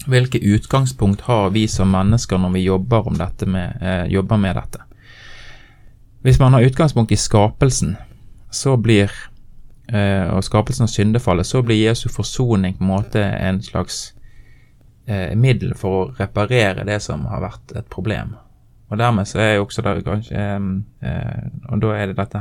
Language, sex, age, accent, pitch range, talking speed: English, male, 20-39, Swedish, 100-120 Hz, 145 wpm